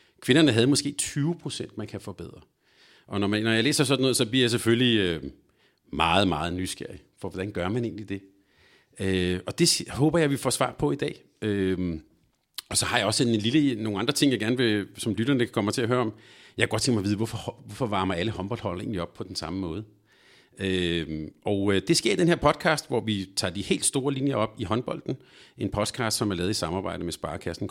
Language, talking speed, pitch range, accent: Danish, 235 wpm, 95-125 Hz, native